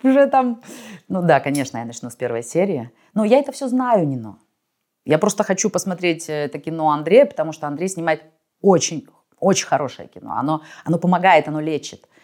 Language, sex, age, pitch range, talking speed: Russian, female, 30-49, 125-165 Hz, 180 wpm